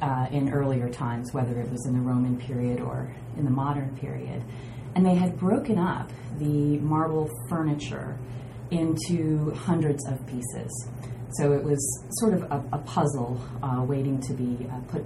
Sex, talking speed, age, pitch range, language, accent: female, 165 wpm, 30-49, 125-150 Hz, English, American